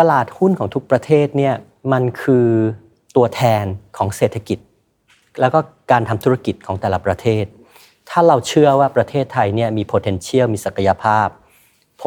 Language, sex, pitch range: Thai, male, 105-135 Hz